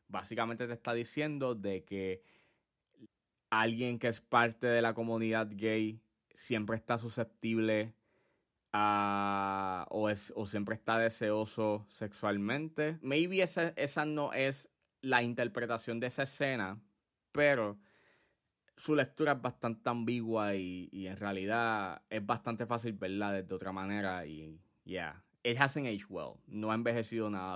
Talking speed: 135 wpm